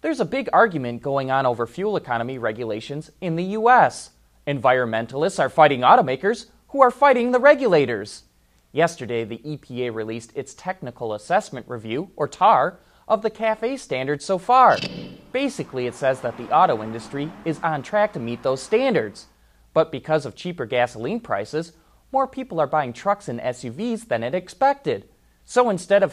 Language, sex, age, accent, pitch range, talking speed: English, male, 30-49, American, 120-205 Hz, 165 wpm